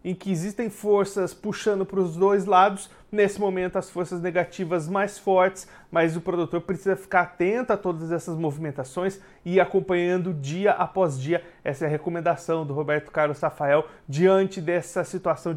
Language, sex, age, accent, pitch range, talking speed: Portuguese, male, 30-49, Brazilian, 170-200 Hz, 165 wpm